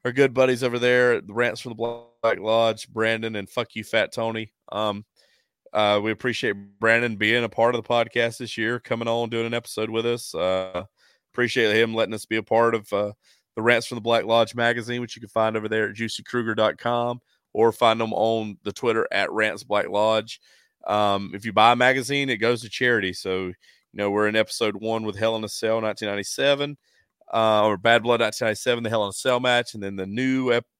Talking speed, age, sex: 215 wpm, 30-49, male